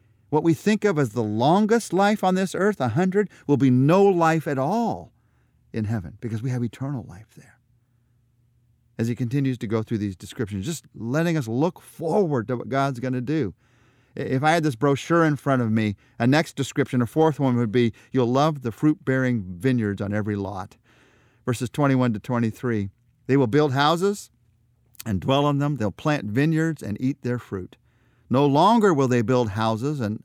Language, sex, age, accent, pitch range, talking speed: English, male, 50-69, American, 115-145 Hz, 195 wpm